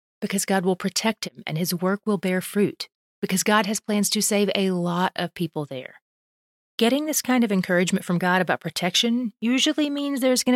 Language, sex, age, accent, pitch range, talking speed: English, female, 30-49, American, 170-220 Hz, 200 wpm